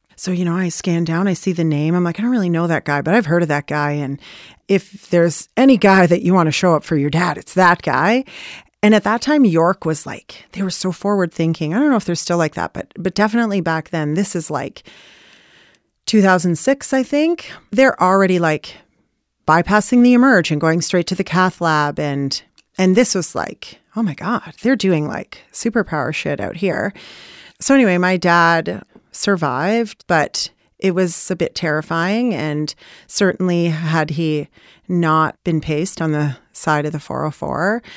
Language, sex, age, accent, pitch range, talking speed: English, female, 30-49, American, 160-200 Hz, 195 wpm